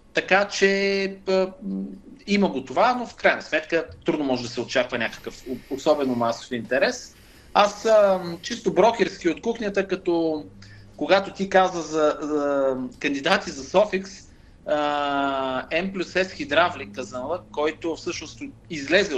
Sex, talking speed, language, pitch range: male, 140 wpm, Bulgarian, 130-185 Hz